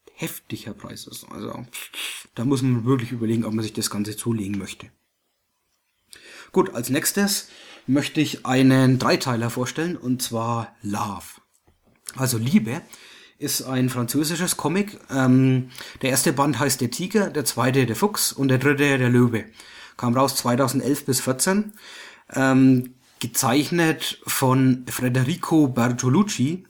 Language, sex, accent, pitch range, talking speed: English, male, German, 120-145 Hz, 130 wpm